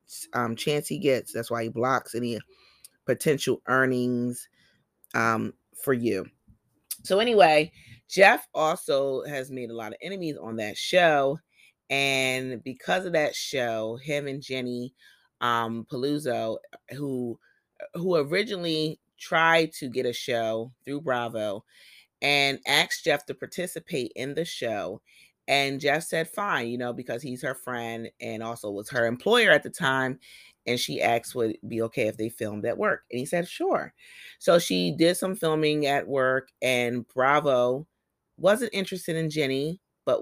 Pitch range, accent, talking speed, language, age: 120-150 Hz, American, 155 wpm, English, 30-49